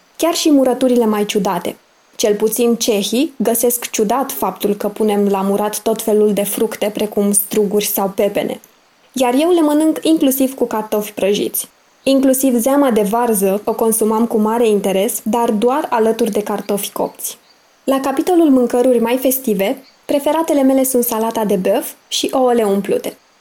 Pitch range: 205-250 Hz